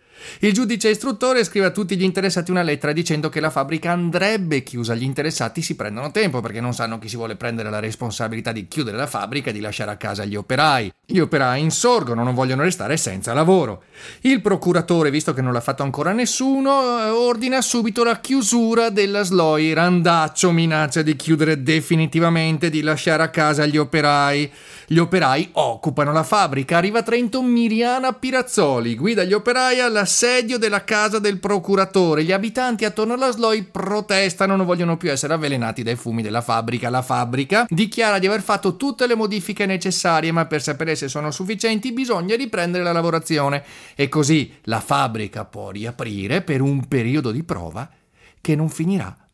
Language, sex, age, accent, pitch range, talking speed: Italian, male, 40-59, native, 130-205 Hz, 175 wpm